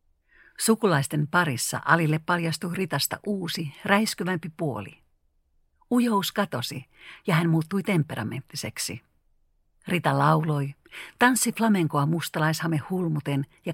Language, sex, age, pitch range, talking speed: Finnish, female, 50-69, 120-185 Hz, 90 wpm